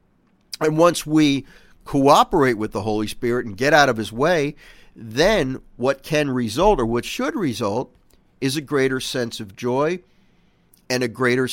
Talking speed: 160 wpm